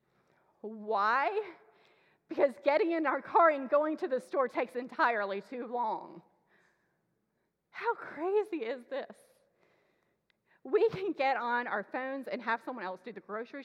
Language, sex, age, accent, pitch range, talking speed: English, female, 30-49, American, 205-270 Hz, 140 wpm